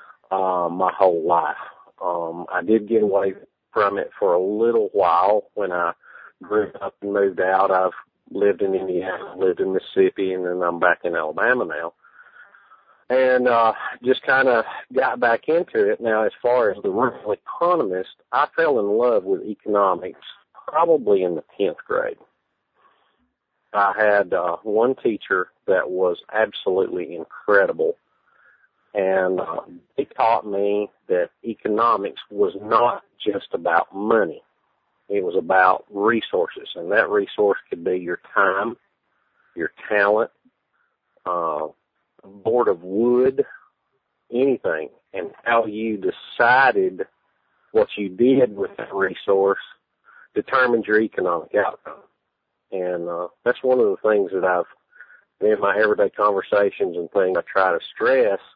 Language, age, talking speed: English, 40-59, 140 wpm